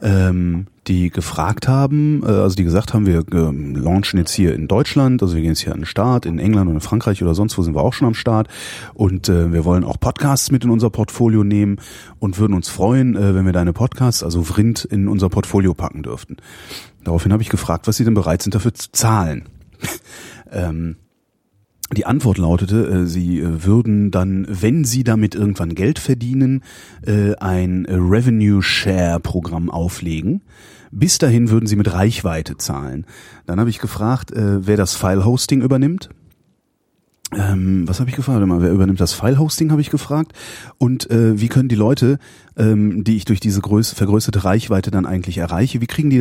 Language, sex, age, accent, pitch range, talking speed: German, male, 30-49, German, 90-115 Hz, 170 wpm